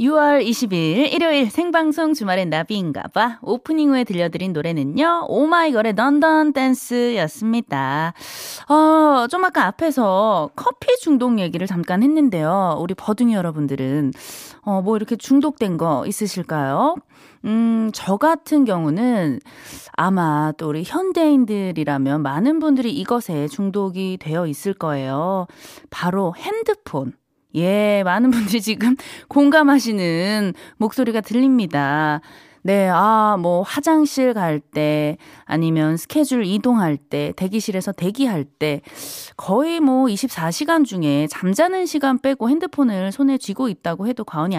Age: 20-39